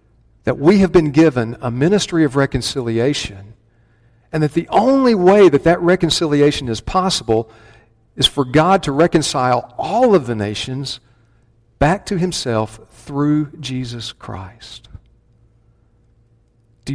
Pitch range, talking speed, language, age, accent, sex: 115-145 Hz, 125 wpm, English, 50-69, American, male